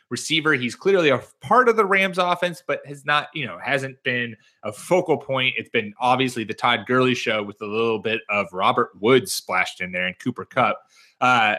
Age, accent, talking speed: 30-49, American, 205 wpm